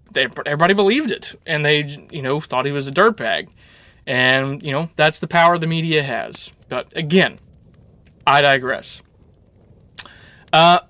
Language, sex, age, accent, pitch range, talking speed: English, male, 20-39, American, 135-170 Hz, 145 wpm